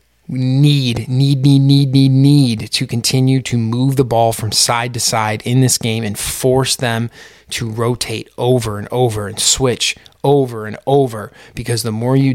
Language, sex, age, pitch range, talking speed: English, male, 20-39, 110-130 Hz, 180 wpm